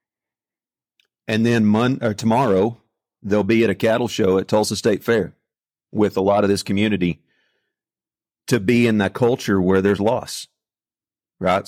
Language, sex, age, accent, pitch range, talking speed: English, male, 40-59, American, 95-110 Hz, 155 wpm